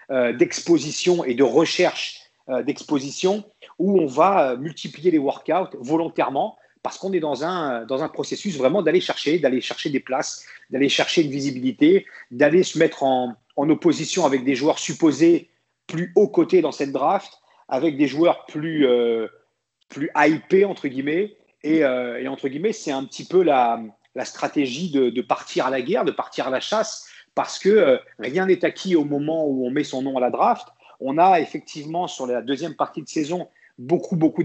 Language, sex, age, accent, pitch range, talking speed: French, male, 40-59, French, 135-185 Hz, 185 wpm